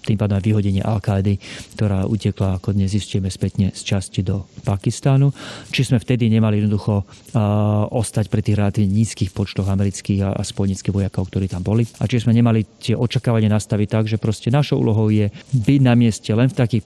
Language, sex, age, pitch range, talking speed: Slovak, male, 40-59, 105-120 Hz, 190 wpm